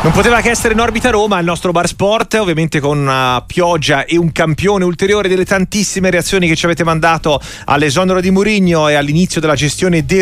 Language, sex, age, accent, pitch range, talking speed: Italian, male, 30-49, native, 125-165 Hz, 200 wpm